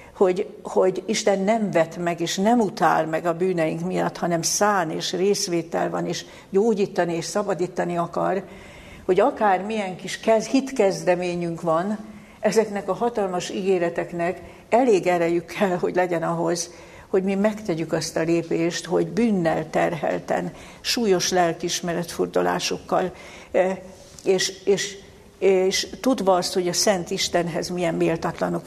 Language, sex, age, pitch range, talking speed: Hungarian, female, 60-79, 170-195 Hz, 130 wpm